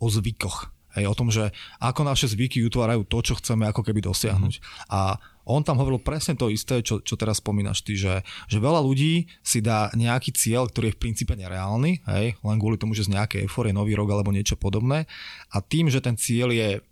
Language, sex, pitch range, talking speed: Slovak, male, 105-125 Hz, 215 wpm